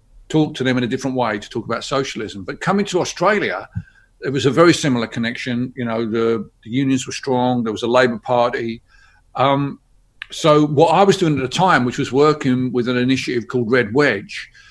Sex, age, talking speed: male, 50-69, 210 wpm